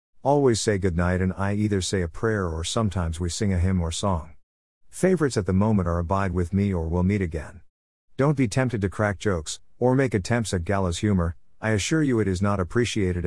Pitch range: 85-115 Hz